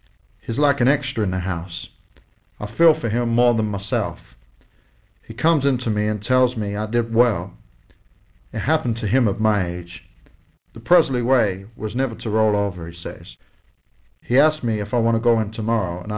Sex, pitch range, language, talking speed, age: male, 100-125 Hz, English, 195 wpm, 50-69